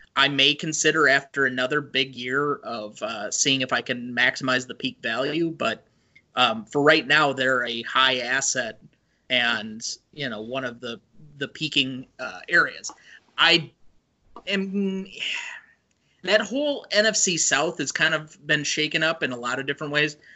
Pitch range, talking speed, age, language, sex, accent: 130-155 Hz, 160 wpm, 30-49, English, male, American